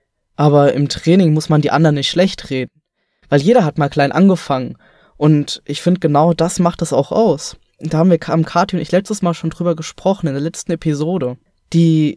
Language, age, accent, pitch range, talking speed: German, 20-39, German, 145-175 Hz, 205 wpm